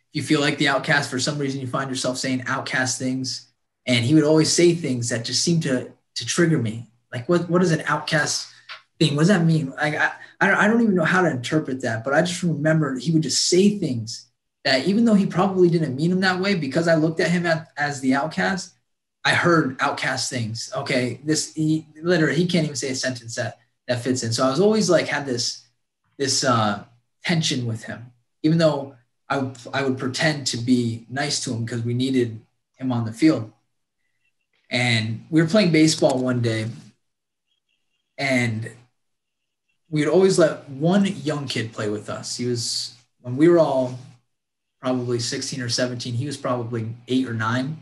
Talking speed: 200 wpm